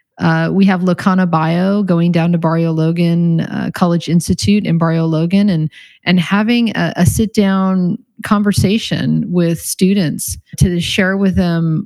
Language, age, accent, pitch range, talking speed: English, 30-49, American, 160-190 Hz, 150 wpm